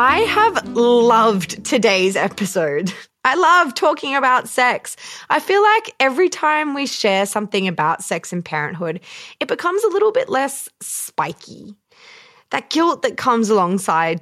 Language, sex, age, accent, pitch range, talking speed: English, female, 20-39, Australian, 190-305 Hz, 145 wpm